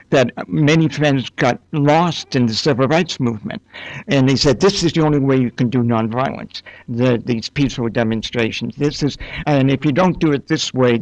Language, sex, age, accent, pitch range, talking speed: English, male, 60-79, American, 125-160 Hz, 195 wpm